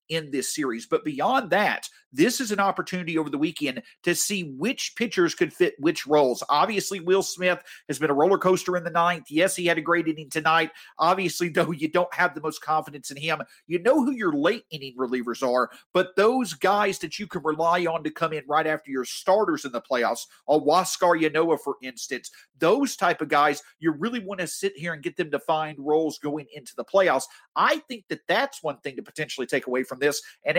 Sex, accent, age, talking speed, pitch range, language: male, American, 40-59, 220 wpm, 155-230 Hz, English